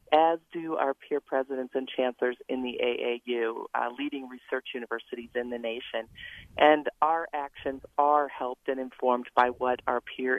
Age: 40-59